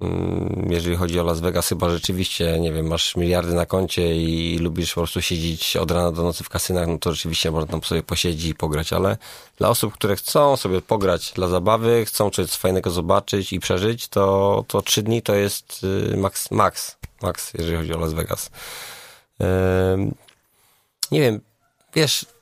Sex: male